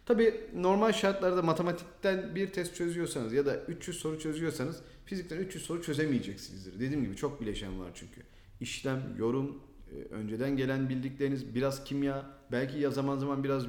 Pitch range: 120-160 Hz